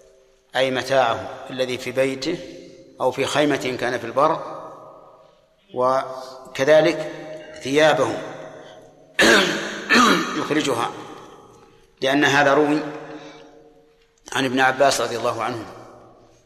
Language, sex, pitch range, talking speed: Arabic, male, 125-145 Hz, 85 wpm